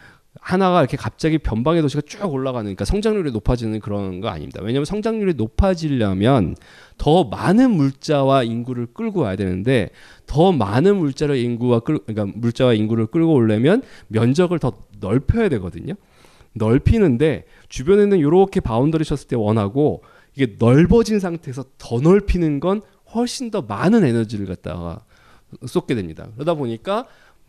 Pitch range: 120-180 Hz